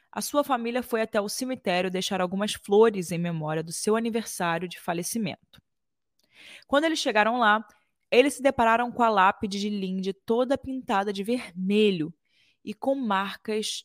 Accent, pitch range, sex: Brazilian, 195-245 Hz, female